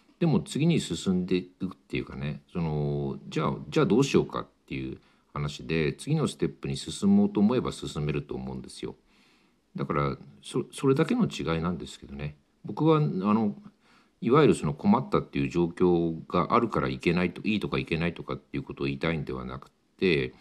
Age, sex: 50-69, male